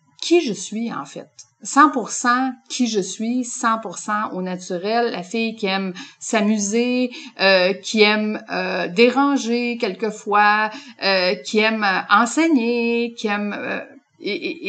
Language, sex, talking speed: French, female, 125 wpm